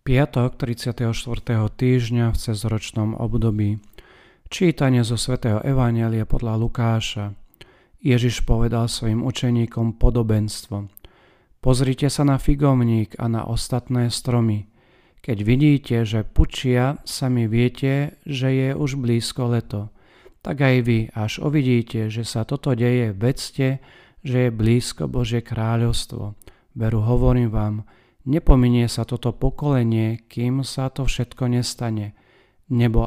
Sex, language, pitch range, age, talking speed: male, Slovak, 110-125 Hz, 40-59, 115 wpm